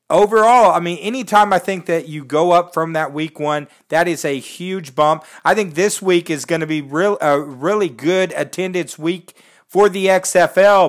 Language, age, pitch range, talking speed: English, 40-59, 150-195 Hz, 200 wpm